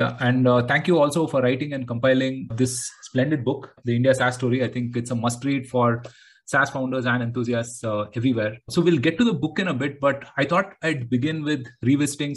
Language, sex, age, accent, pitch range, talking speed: English, male, 30-49, Indian, 120-140 Hz, 225 wpm